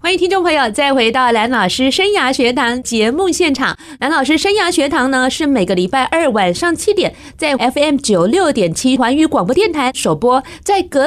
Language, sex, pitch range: Chinese, female, 205-295 Hz